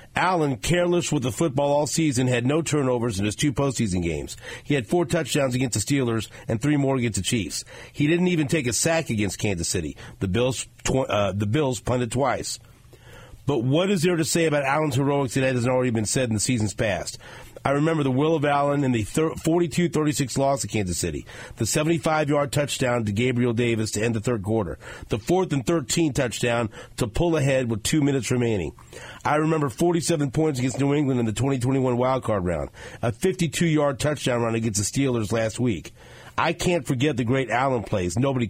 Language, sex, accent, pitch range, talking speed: English, male, American, 115-145 Hz, 200 wpm